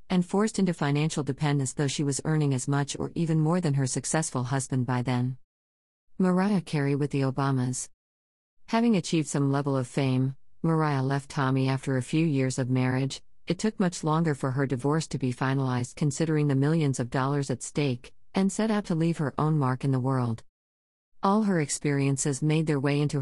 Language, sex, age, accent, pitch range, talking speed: English, female, 50-69, American, 130-155 Hz, 195 wpm